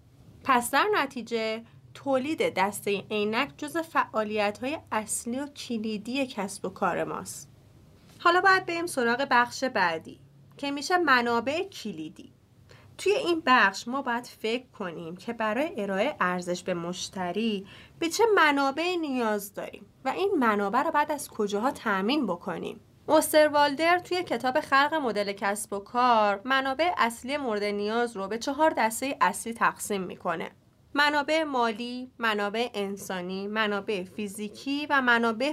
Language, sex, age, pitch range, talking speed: Persian, female, 30-49, 210-280 Hz, 140 wpm